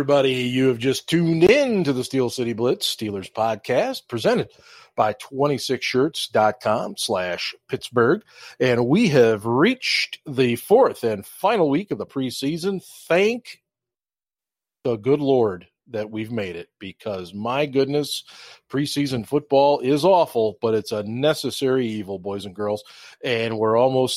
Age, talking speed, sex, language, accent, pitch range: 40-59, 140 wpm, male, English, American, 105-140 Hz